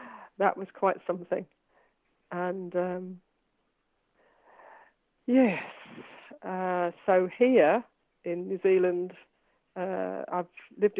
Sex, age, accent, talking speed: female, 50-69, British, 85 wpm